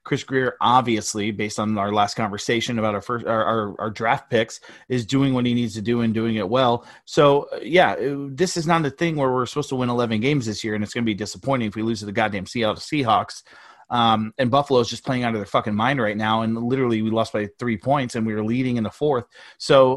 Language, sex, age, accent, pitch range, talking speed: English, male, 30-49, American, 110-135 Hz, 260 wpm